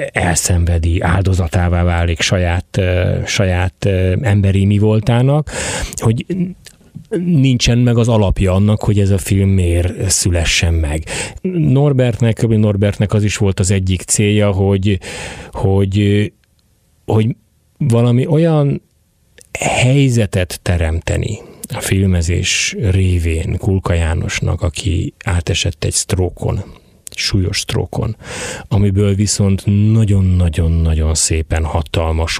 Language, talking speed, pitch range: Hungarian, 95 wpm, 90-110 Hz